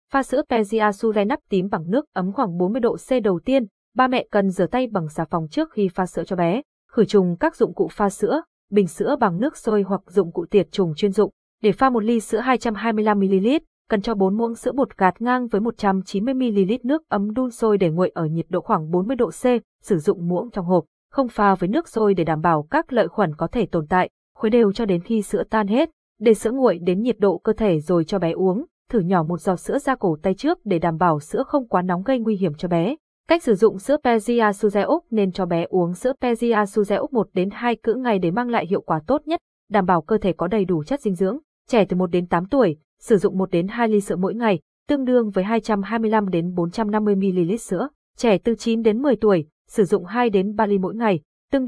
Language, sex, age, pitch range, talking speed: Vietnamese, female, 20-39, 185-240 Hz, 245 wpm